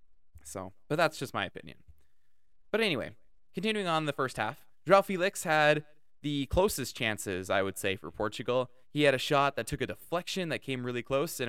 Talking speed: 195 wpm